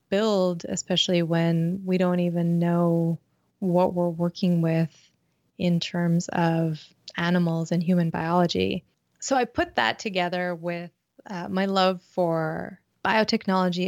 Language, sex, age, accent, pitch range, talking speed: English, female, 20-39, American, 170-185 Hz, 125 wpm